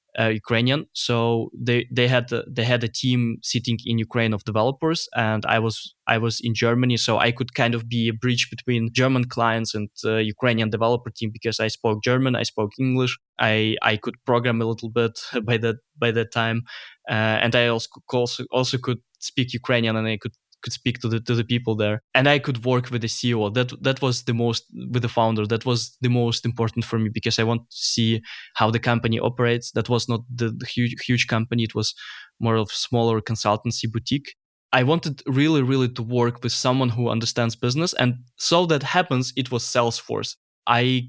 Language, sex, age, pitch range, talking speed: English, male, 20-39, 115-125 Hz, 205 wpm